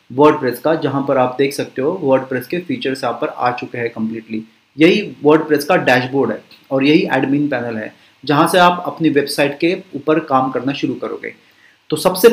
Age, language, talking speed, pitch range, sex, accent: 30-49, Hindi, 195 wpm, 140-170 Hz, male, native